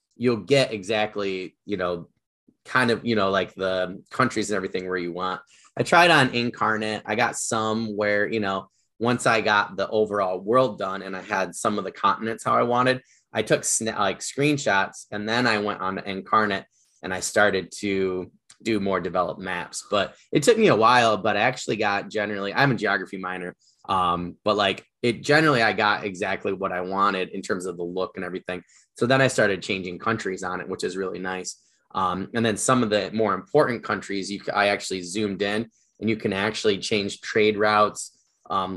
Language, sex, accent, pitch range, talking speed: English, male, American, 95-110 Hz, 205 wpm